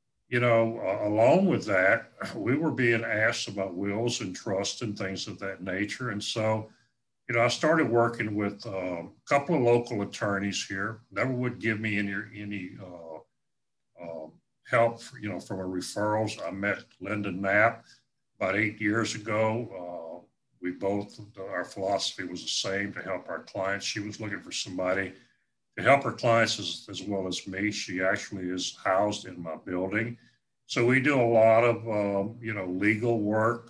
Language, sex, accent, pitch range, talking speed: English, male, American, 100-120 Hz, 180 wpm